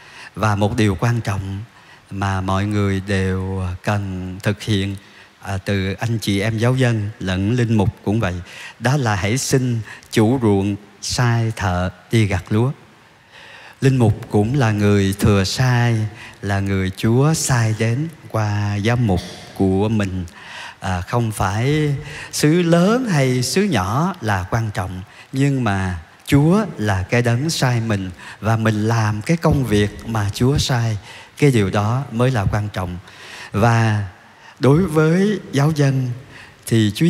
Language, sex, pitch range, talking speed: Vietnamese, male, 100-135 Hz, 150 wpm